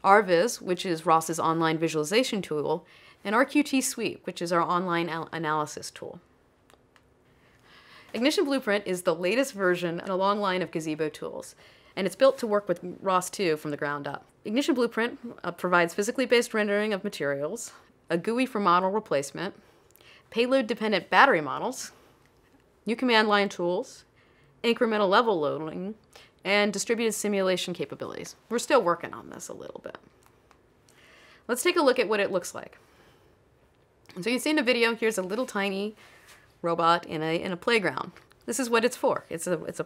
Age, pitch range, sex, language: 30-49, 170-230 Hz, female, English